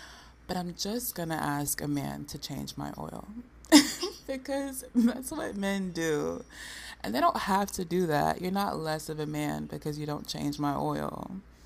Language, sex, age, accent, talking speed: English, female, 20-39, American, 185 wpm